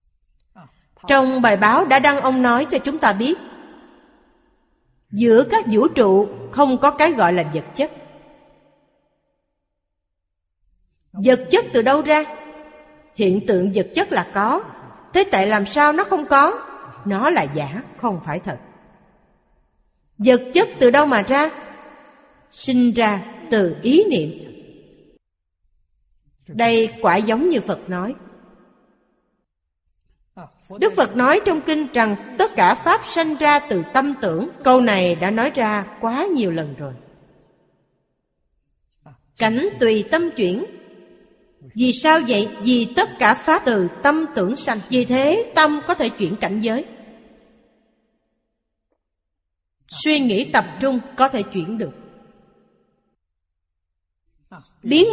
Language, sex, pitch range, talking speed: Vietnamese, female, 185-290 Hz, 130 wpm